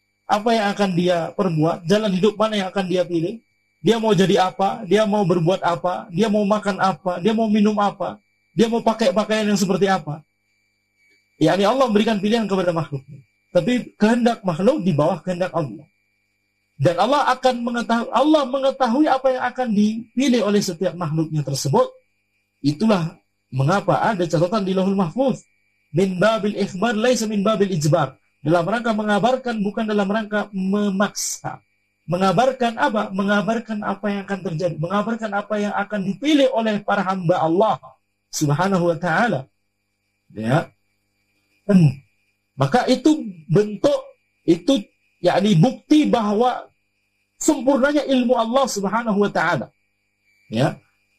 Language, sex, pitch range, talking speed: Indonesian, male, 140-225 Hz, 135 wpm